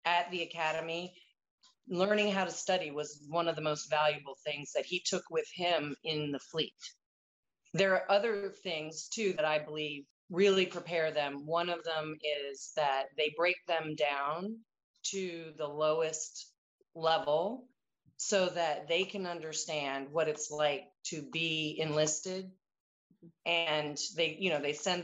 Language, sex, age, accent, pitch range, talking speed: English, female, 30-49, American, 155-175 Hz, 150 wpm